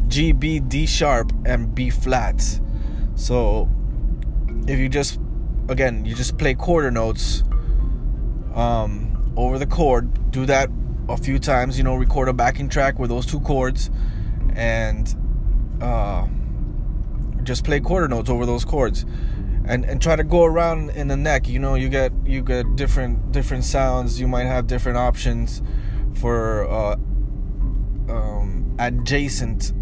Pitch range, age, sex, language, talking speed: 110-135 Hz, 20-39, male, English, 145 wpm